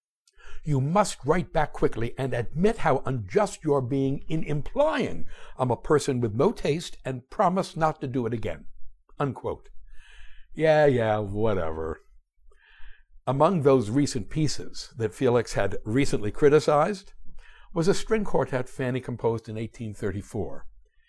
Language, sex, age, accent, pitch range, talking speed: English, male, 60-79, American, 115-160 Hz, 135 wpm